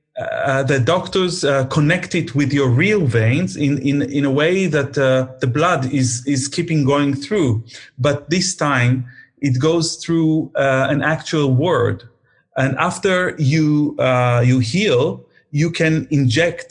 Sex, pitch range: male, 130-155 Hz